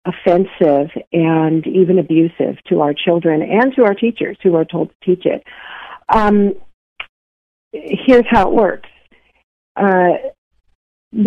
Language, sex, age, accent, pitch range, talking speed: English, female, 50-69, American, 170-205 Hz, 120 wpm